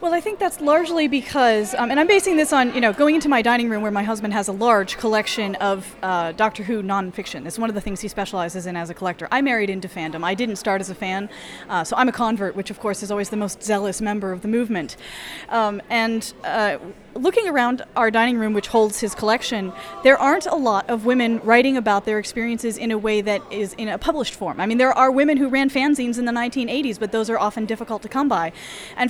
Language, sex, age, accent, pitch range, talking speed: English, female, 20-39, American, 205-255 Hz, 245 wpm